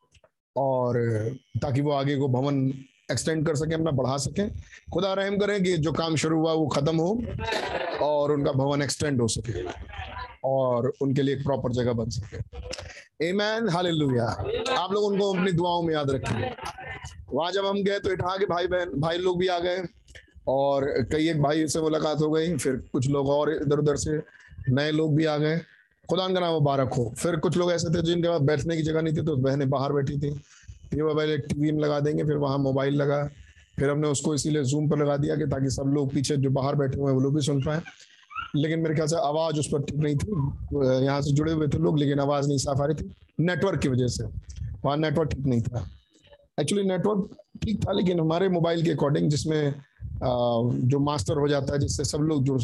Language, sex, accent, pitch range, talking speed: Hindi, male, native, 135-160 Hz, 210 wpm